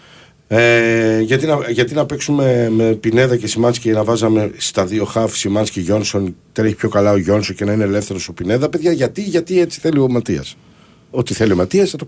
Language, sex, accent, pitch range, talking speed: Greek, male, native, 90-125 Hz, 215 wpm